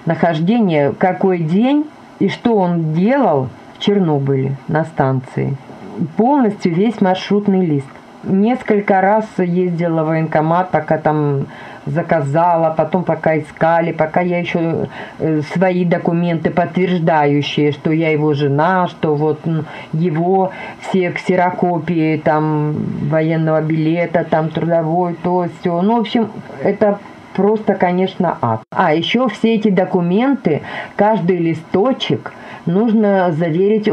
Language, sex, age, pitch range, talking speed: Russian, female, 40-59, 150-195 Hz, 115 wpm